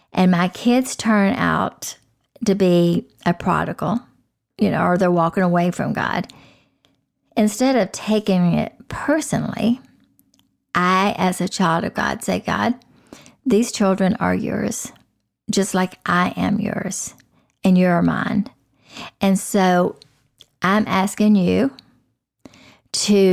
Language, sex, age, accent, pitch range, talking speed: English, female, 50-69, American, 185-215 Hz, 125 wpm